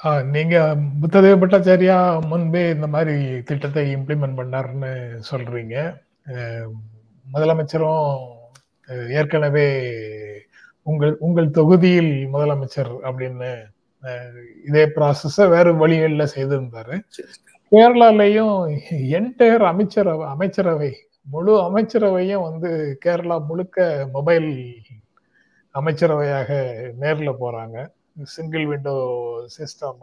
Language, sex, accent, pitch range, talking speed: Tamil, male, native, 135-175 Hz, 80 wpm